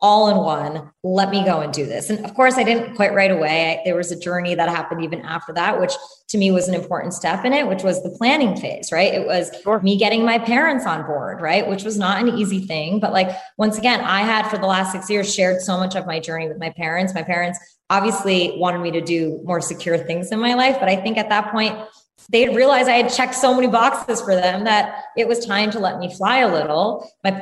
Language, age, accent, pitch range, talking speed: English, 20-39, American, 165-210 Hz, 255 wpm